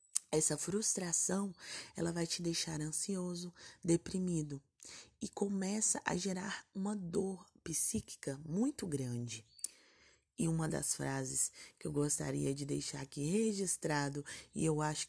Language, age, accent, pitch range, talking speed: Portuguese, 20-39, Brazilian, 140-175 Hz, 125 wpm